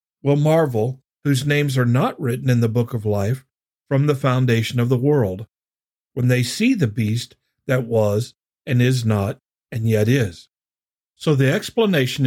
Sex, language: male, English